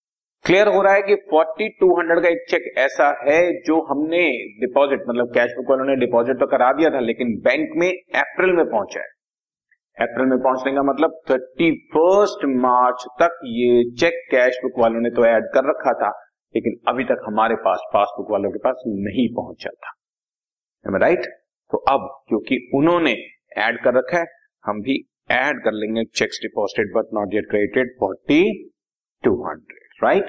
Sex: male